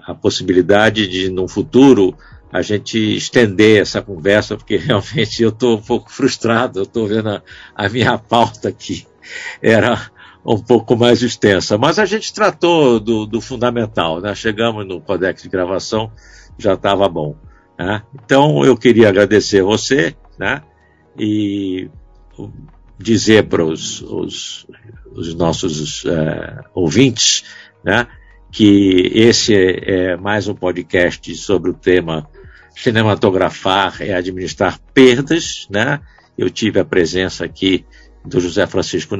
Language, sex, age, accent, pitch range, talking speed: Portuguese, male, 60-79, Brazilian, 95-125 Hz, 130 wpm